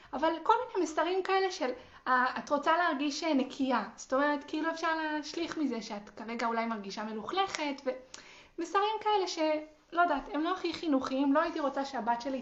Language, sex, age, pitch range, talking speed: Hebrew, female, 20-39, 235-300 Hz, 170 wpm